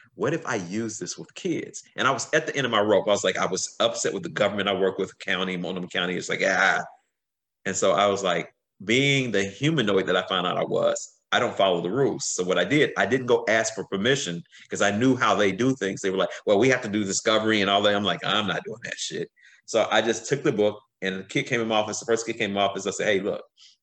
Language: English